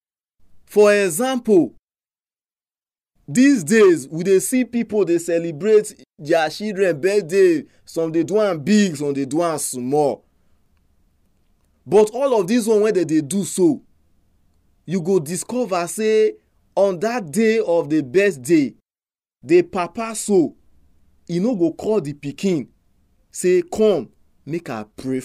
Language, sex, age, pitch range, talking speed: English, male, 30-49, 130-215 Hz, 125 wpm